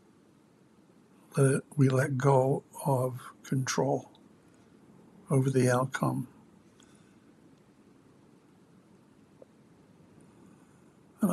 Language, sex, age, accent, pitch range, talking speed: English, male, 60-79, American, 125-140 Hz, 55 wpm